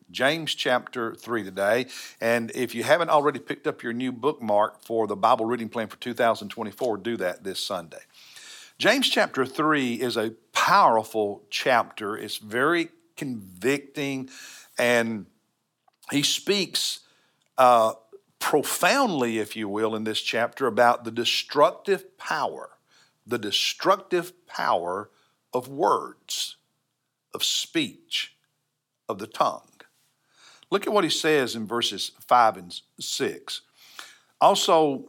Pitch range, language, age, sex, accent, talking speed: 115-155 Hz, English, 50-69, male, American, 120 wpm